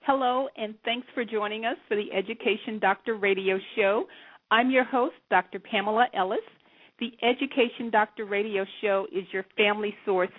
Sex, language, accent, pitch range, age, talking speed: female, English, American, 195-235 Hz, 50-69, 155 wpm